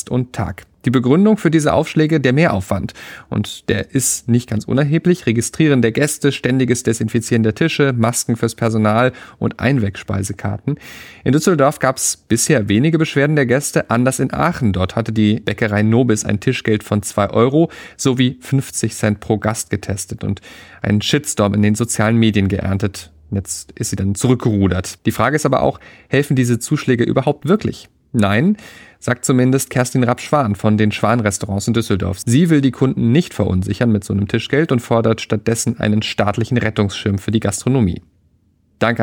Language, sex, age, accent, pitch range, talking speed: German, male, 30-49, German, 105-130 Hz, 170 wpm